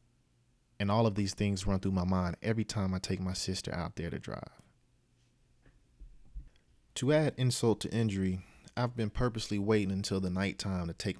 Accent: American